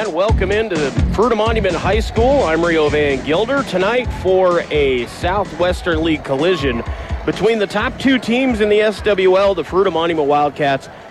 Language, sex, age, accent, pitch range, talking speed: English, male, 30-49, American, 125-180 Hz, 150 wpm